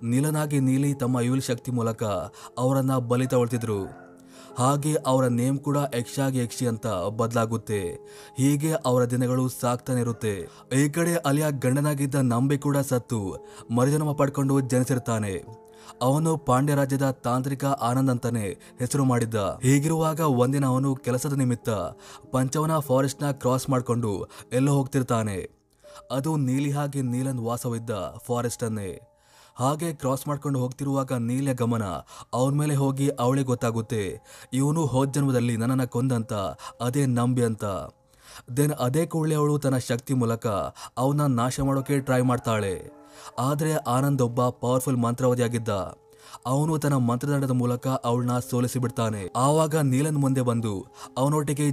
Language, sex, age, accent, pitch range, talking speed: Kannada, male, 20-39, native, 120-140 Hz, 125 wpm